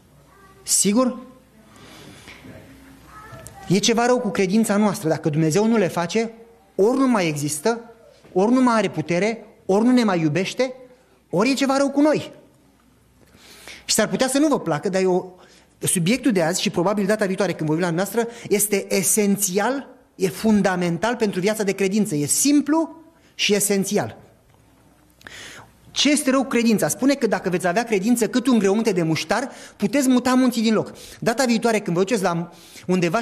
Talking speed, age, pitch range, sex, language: 165 wpm, 30-49, 190-255 Hz, male, Romanian